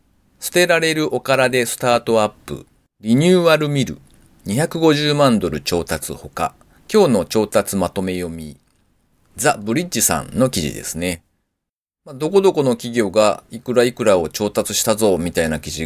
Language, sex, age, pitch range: Japanese, male, 40-59, 100-145 Hz